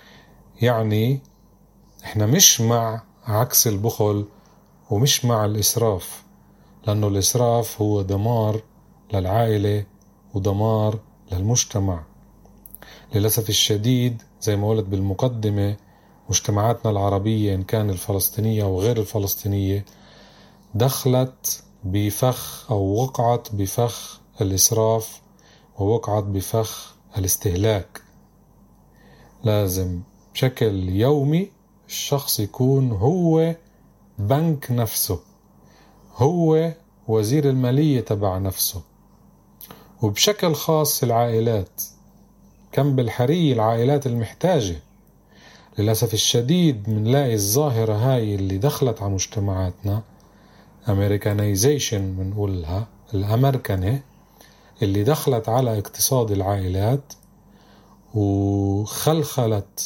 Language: Arabic